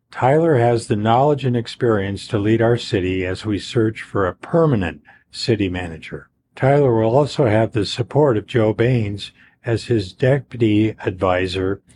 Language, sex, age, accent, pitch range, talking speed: English, male, 50-69, American, 105-130 Hz, 155 wpm